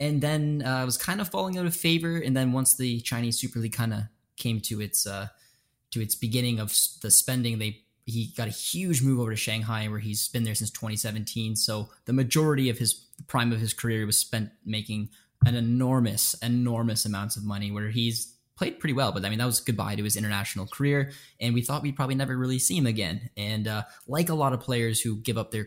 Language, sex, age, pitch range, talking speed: English, male, 10-29, 105-125 Hz, 230 wpm